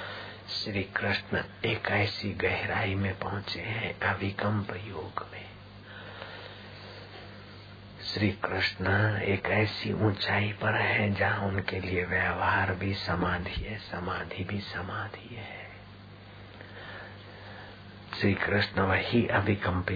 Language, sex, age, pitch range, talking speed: Hindi, male, 50-69, 95-105 Hz, 95 wpm